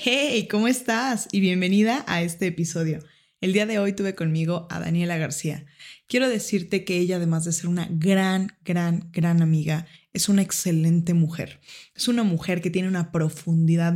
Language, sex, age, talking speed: Spanish, female, 20-39, 170 wpm